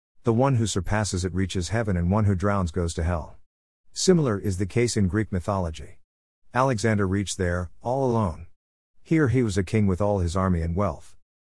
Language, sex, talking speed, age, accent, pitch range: English, male, 195 wpm, 50-69, American, 85-120 Hz